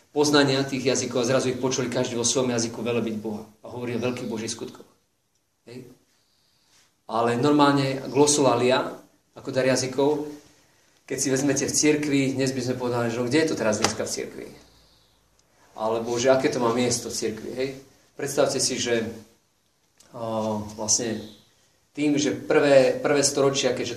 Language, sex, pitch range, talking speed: Slovak, male, 115-135 Hz, 155 wpm